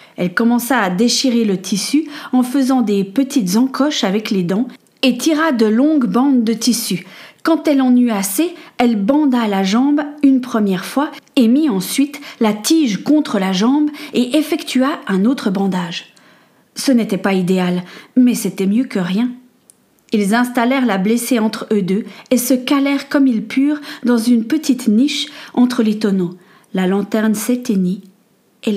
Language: French